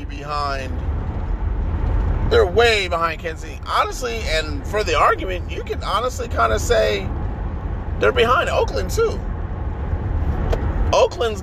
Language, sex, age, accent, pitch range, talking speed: English, male, 30-49, American, 80-105 Hz, 105 wpm